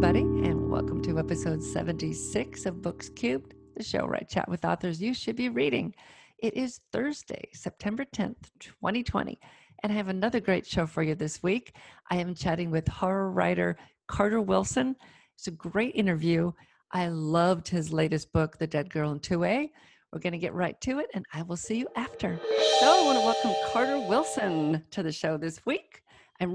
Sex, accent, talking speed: female, American, 190 wpm